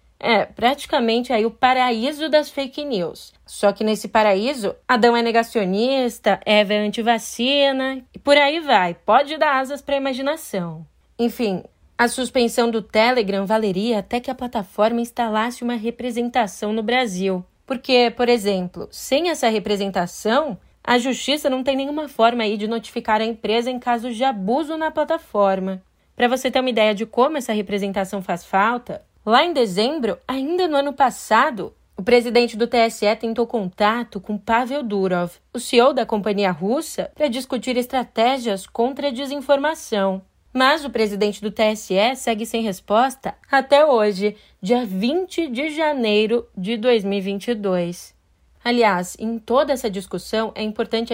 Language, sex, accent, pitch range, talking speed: Portuguese, female, Brazilian, 210-260 Hz, 150 wpm